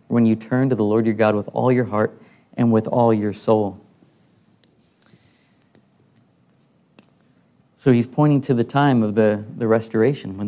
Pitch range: 110-125 Hz